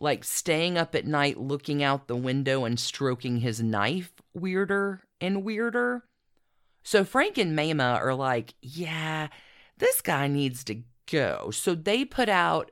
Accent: American